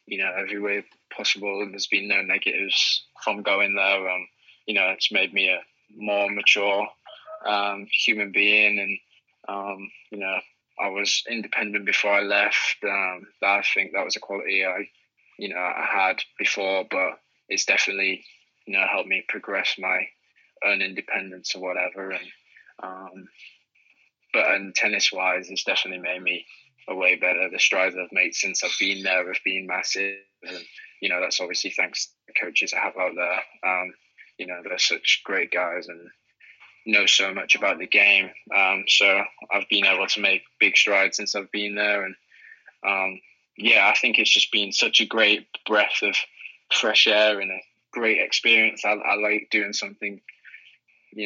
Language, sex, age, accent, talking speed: English, male, 20-39, British, 175 wpm